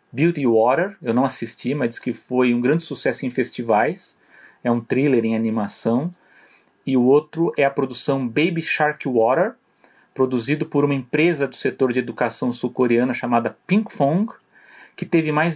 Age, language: 30-49, Portuguese